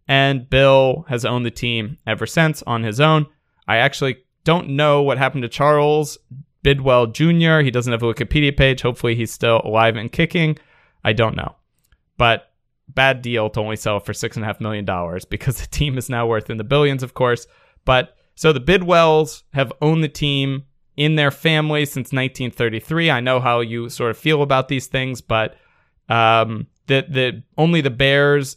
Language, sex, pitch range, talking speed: English, male, 115-145 Hz, 180 wpm